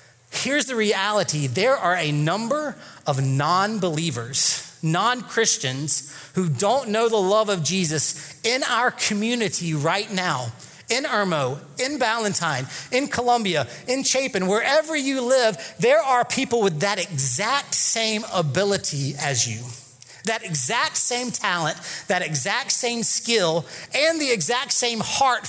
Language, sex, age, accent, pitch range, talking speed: English, male, 30-49, American, 160-230 Hz, 130 wpm